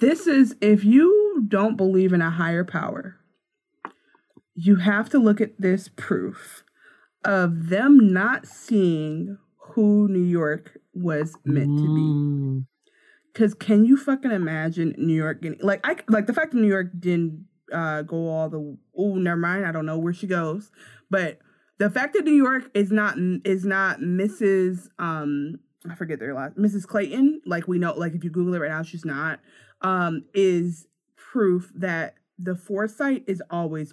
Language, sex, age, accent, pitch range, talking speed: English, female, 20-39, American, 165-215 Hz, 165 wpm